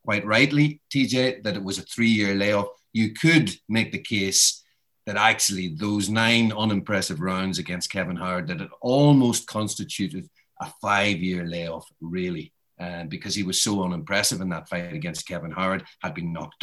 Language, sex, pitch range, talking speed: English, male, 95-120 Hz, 160 wpm